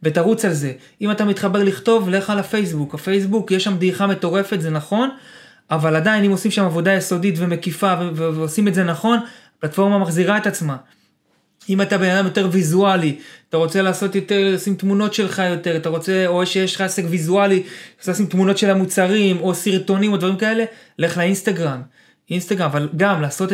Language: Hebrew